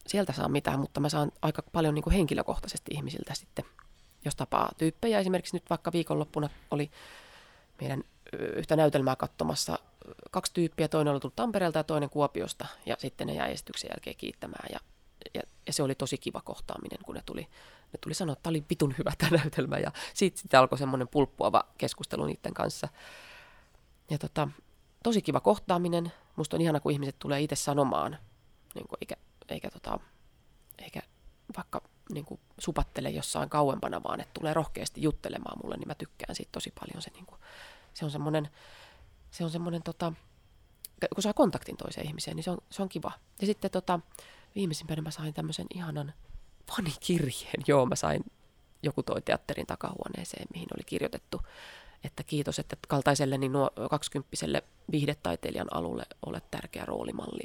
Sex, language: female, Finnish